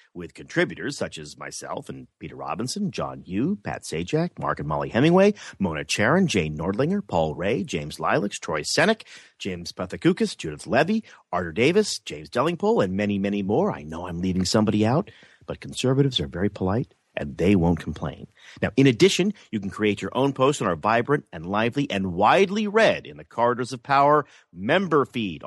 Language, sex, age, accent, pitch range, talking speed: English, male, 40-59, American, 100-155 Hz, 180 wpm